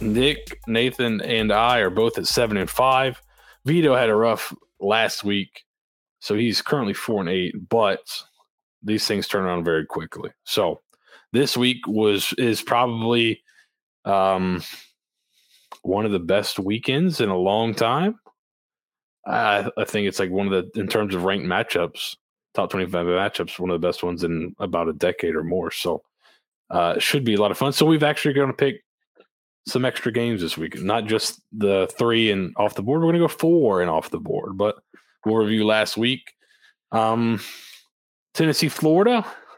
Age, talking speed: 20-39, 175 wpm